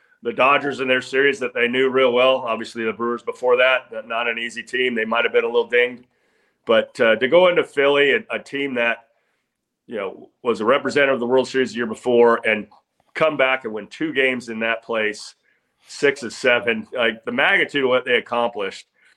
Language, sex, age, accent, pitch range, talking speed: English, male, 40-59, American, 120-175 Hz, 210 wpm